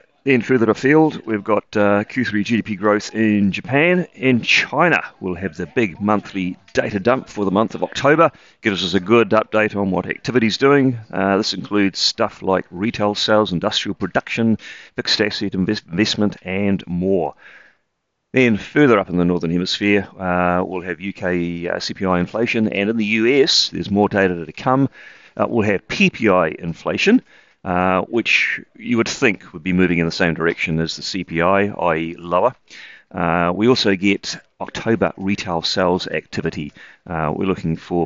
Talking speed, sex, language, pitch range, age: 165 wpm, male, English, 90-110 Hz, 40-59